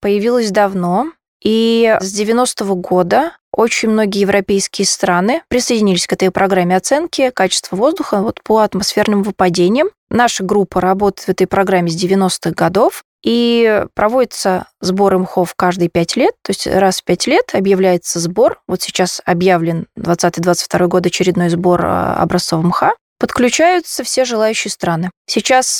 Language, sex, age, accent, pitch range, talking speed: Russian, female, 20-39, native, 185-240 Hz, 135 wpm